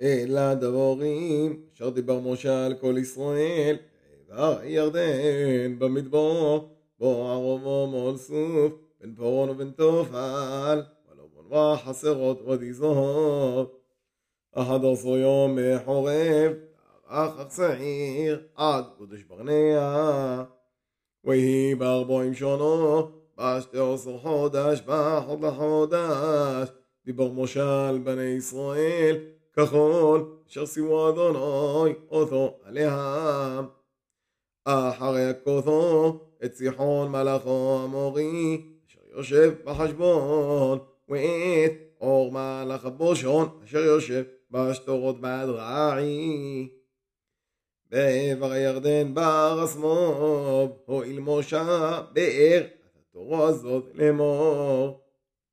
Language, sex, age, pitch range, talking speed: Hebrew, male, 20-39, 130-155 Hz, 85 wpm